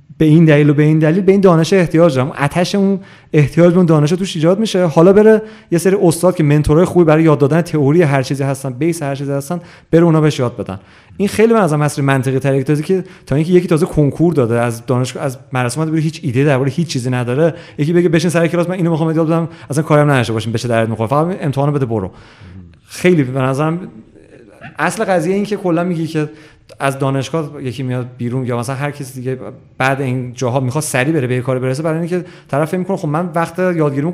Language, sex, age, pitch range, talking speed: Persian, male, 30-49, 130-165 Hz, 230 wpm